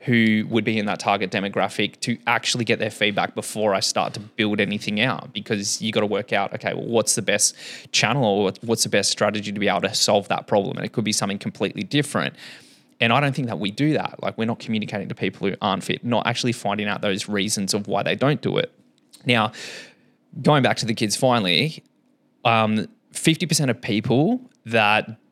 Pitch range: 105-120 Hz